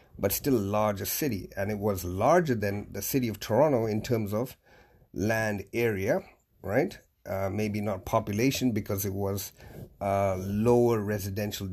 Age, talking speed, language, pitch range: 50-69, 155 wpm, English, 100-110 Hz